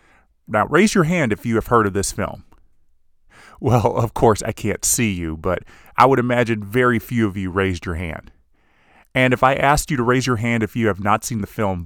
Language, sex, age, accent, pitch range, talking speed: English, male, 30-49, American, 100-135 Hz, 230 wpm